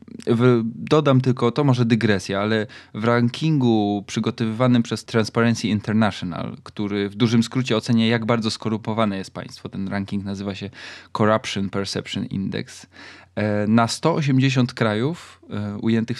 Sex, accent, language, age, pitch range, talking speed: male, native, Polish, 20-39, 105-120 Hz, 120 wpm